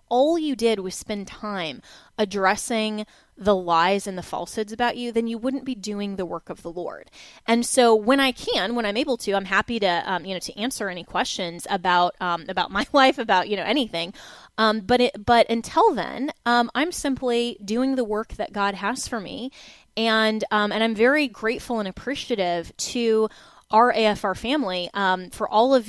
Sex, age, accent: female, 20-39, American